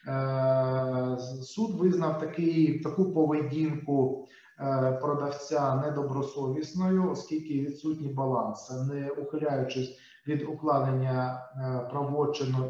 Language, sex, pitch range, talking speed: Ukrainian, male, 130-155 Hz, 70 wpm